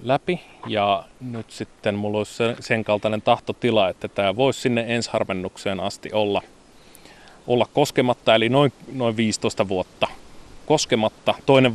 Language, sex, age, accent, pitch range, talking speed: Finnish, male, 30-49, native, 105-120 Hz, 130 wpm